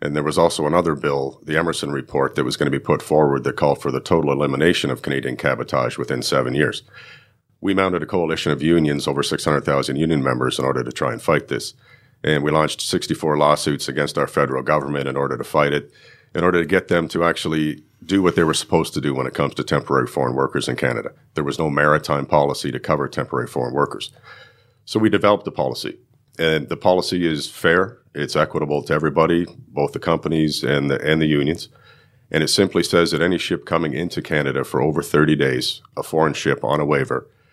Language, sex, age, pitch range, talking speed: English, male, 40-59, 70-85 Hz, 215 wpm